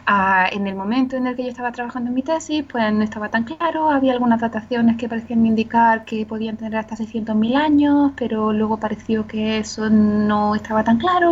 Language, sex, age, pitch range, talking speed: Spanish, female, 20-39, 195-260 Hz, 205 wpm